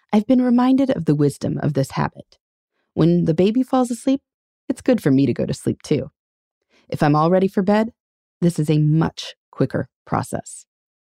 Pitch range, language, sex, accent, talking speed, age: 145-240 Hz, English, female, American, 190 wpm, 30-49